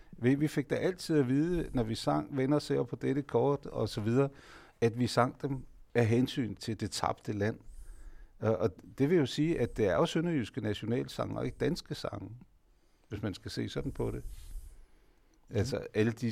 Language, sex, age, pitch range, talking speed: Danish, male, 60-79, 105-140 Hz, 190 wpm